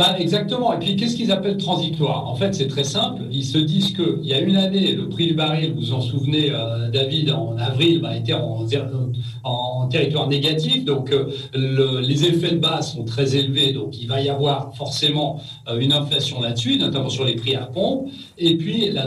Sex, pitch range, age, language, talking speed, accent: male, 140-195 Hz, 40-59, French, 215 wpm, French